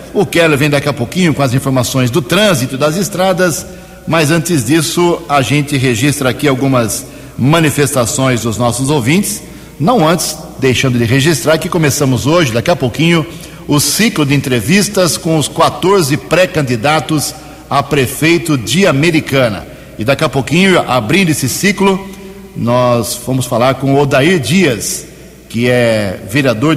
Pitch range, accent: 125-165 Hz, Brazilian